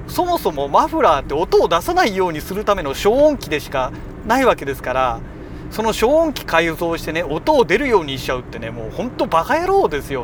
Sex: male